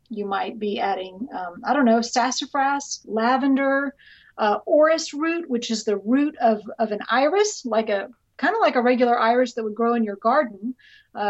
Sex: female